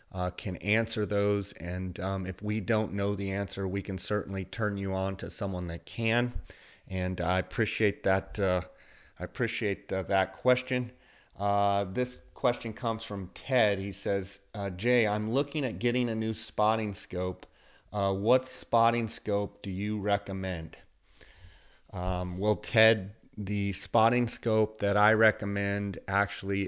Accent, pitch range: American, 95-110 Hz